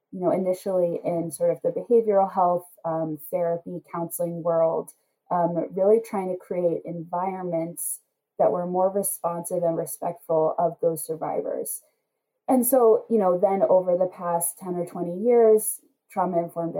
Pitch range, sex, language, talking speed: 170-210 Hz, female, English, 145 wpm